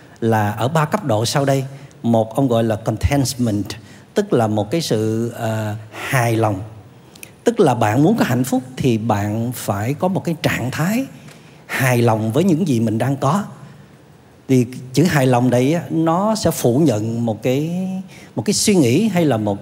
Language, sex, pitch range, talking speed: Vietnamese, male, 115-160 Hz, 185 wpm